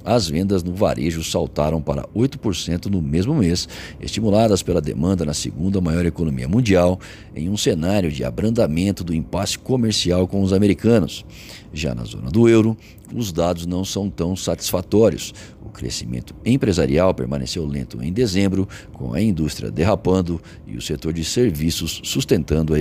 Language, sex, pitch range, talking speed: Portuguese, male, 80-105 Hz, 155 wpm